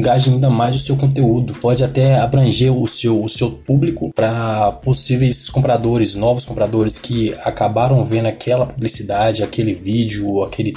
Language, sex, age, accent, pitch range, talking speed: Portuguese, male, 20-39, Brazilian, 110-130 Hz, 155 wpm